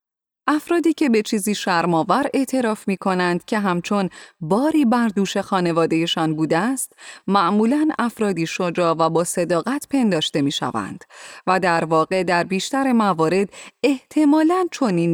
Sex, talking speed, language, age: female, 125 wpm, Persian, 30-49